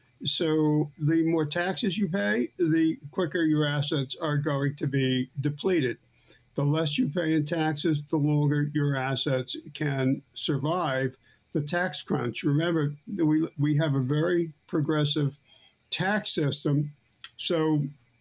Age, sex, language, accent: 60-79, male, English, American